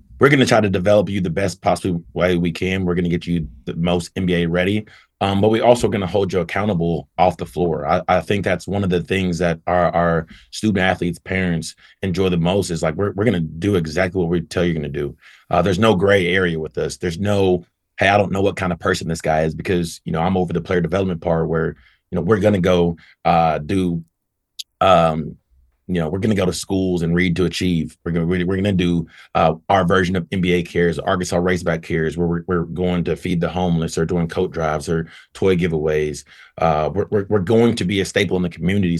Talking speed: 250 wpm